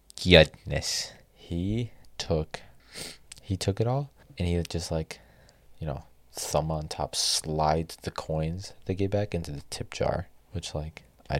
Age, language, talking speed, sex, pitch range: 20-39, English, 155 wpm, male, 80-105 Hz